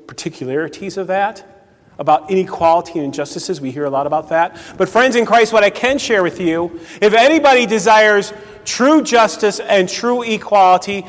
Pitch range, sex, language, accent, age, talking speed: 150-205 Hz, male, English, American, 40-59, 170 wpm